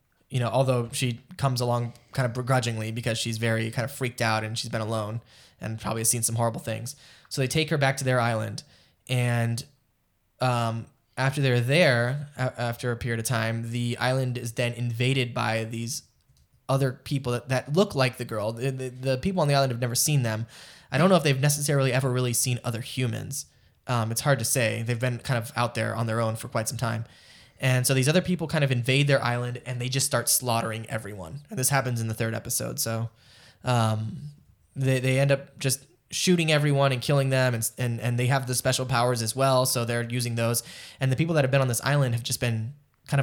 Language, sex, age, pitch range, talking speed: English, male, 10-29, 115-135 Hz, 225 wpm